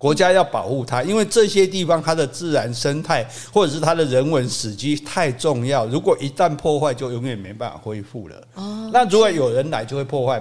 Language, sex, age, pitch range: Chinese, male, 60-79, 120-160 Hz